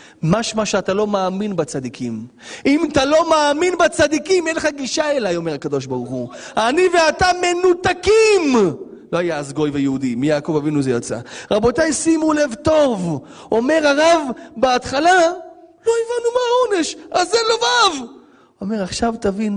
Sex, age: male, 30-49